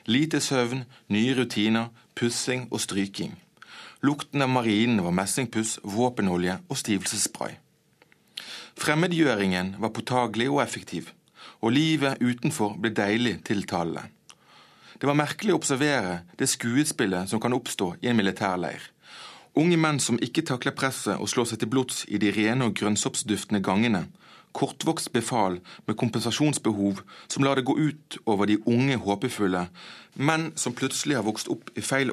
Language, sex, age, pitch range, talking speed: Danish, male, 30-49, 105-135 Hz, 145 wpm